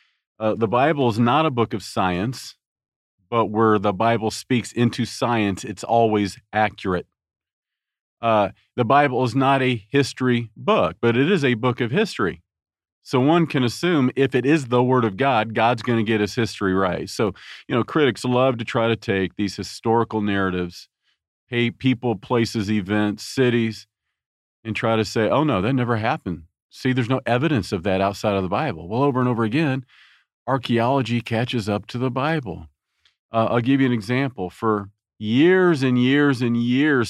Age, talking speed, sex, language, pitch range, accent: 40-59, 180 wpm, male, English, 105-130 Hz, American